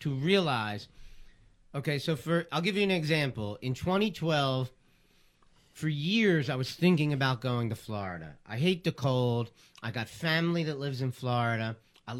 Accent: American